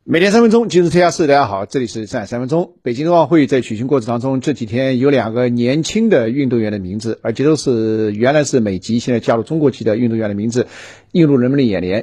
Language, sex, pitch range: Chinese, male, 110-145 Hz